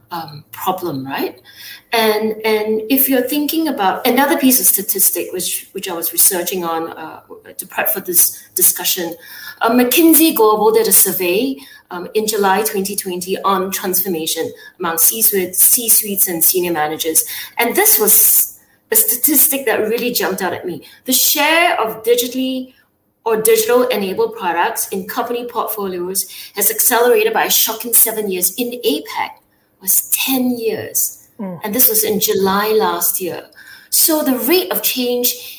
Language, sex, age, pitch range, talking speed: English, female, 20-39, 190-260 Hz, 150 wpm